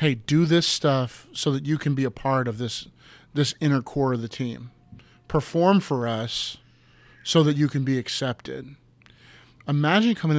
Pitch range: 130-175 Hz